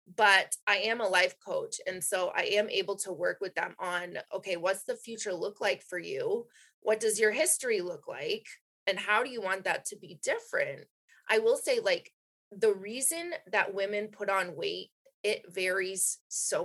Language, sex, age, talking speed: English, female, 20-39, 190 wpm